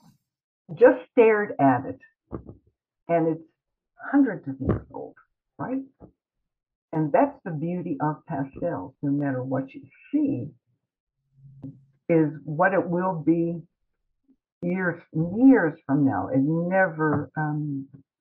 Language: English